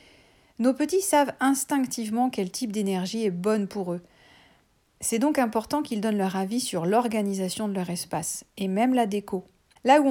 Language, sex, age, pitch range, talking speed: French, female, 40-59, 190-230 Hz, 170 wpm